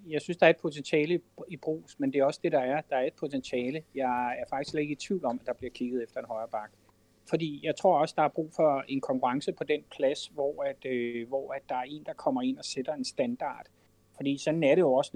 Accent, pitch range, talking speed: native, 130-165 Hz, 275 wpm